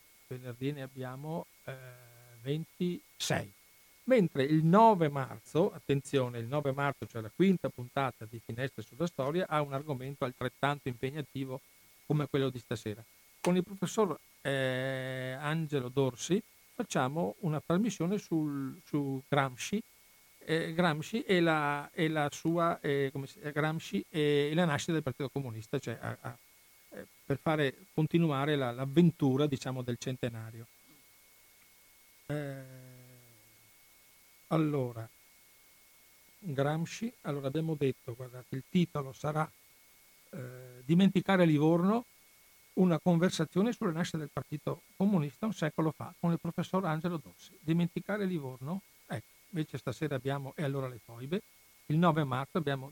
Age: 50-69